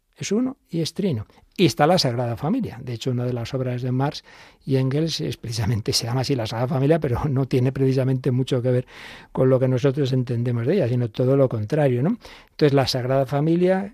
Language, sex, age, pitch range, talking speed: Spanish, male, 60-79, 130-170 Hz, 220 wpm